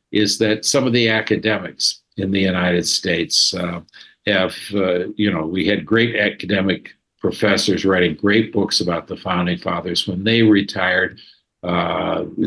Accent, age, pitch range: American, 60-79, 95-115 Hz